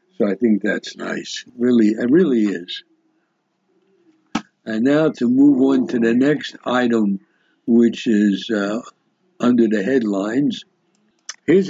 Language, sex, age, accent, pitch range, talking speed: English, male, 60-79, American, 110-140 Hz, 125 wpm